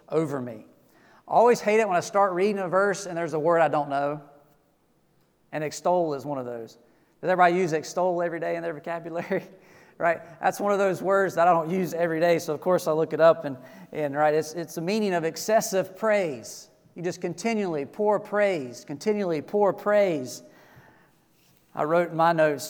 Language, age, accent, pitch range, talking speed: English, 40-59, American, 150-185 Hz, 200 wpm